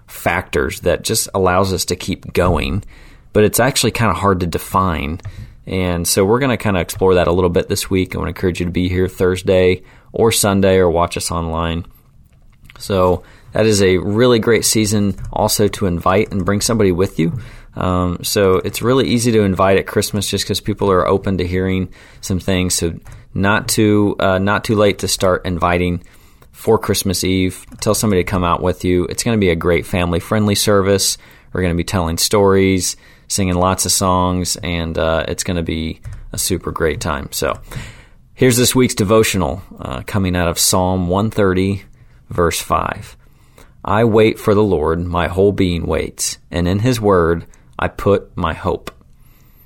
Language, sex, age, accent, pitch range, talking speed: English, male, 30-49, American, 90-105 Hz, 190 wpm